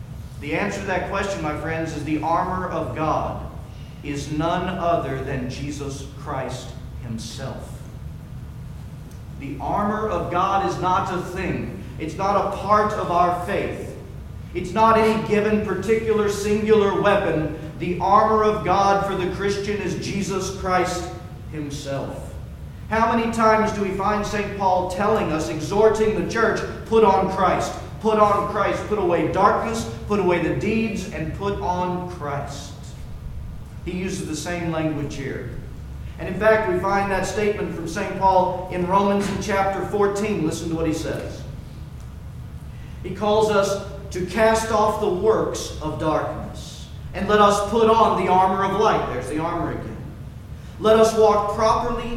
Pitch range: 160-210 Hz